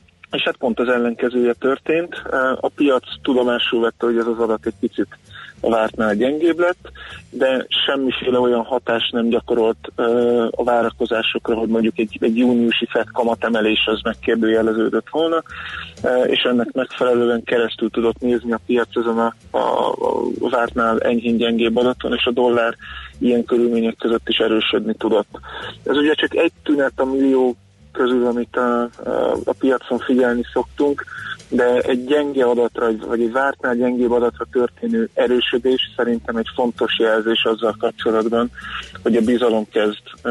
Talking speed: 145 wpm